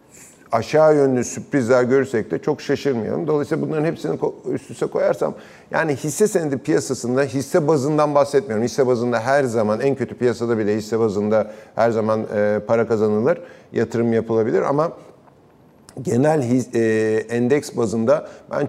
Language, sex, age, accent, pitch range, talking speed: Turkish, male, 50-69, native, 110-140 Hz, 130 wpm